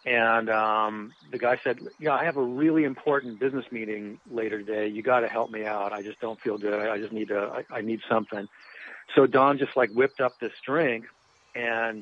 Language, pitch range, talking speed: English, 110-130 Hz, 215 wpm